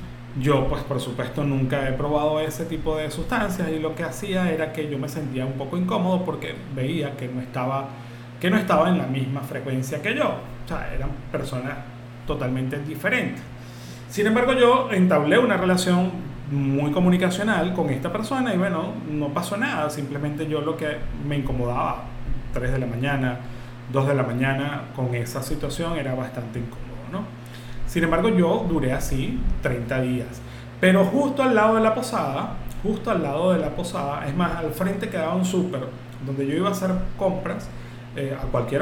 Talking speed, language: 180 wpm, Spanish